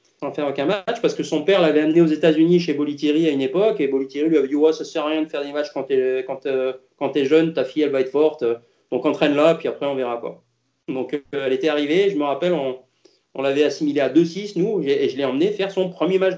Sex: male